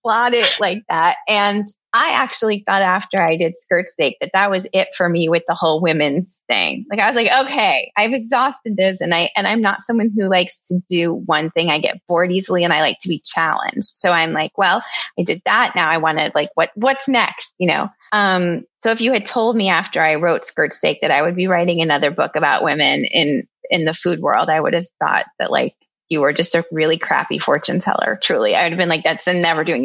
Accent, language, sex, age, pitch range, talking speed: American, English, female, 20-39, 175-210 Hz, 235 wpm